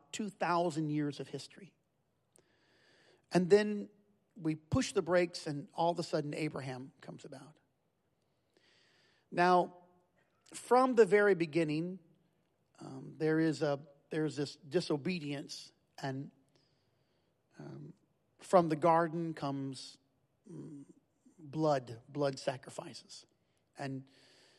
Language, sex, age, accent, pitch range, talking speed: English, male, 40-59, American, 140-175 Hz, 100 wpm